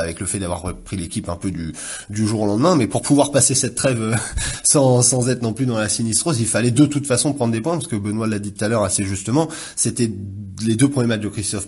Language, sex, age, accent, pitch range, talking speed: French, male, 20-39, French, 110-145 Hz, 265 wpm